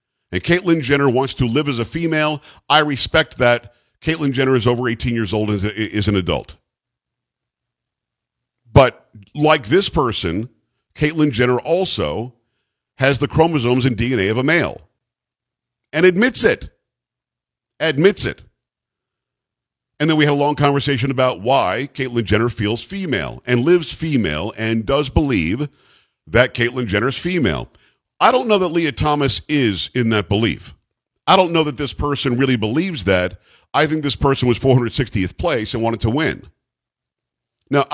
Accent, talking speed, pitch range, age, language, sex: American, 155 wpm, 115-155 Hz, 50-69, English, male